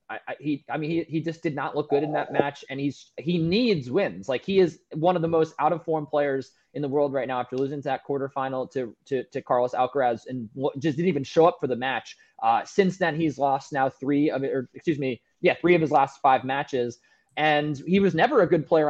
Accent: American